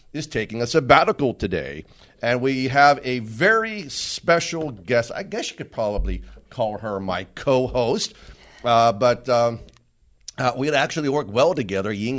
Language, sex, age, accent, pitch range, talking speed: English, male, 50-69, American, 100-155 Hz, 155 wpm